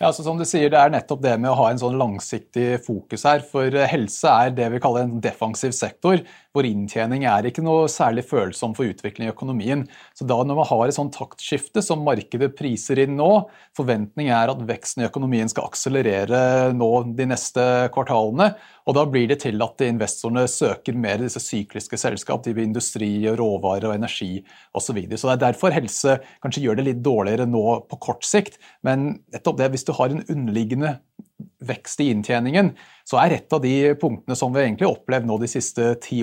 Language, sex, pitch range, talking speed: English, male, 115-140 Hz, 205 wpm